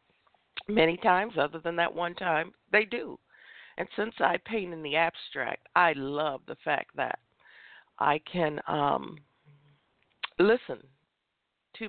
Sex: female